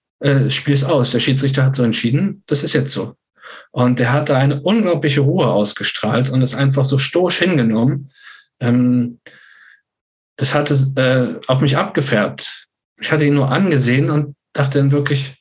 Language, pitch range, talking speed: German, 120-140 Hz, 170 wpm